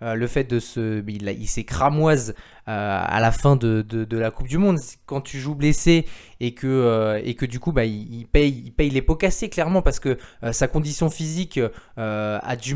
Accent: French